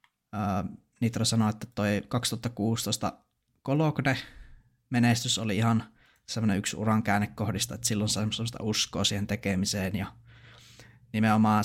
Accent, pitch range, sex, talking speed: native, 100-115 Hz, male, 110 wpm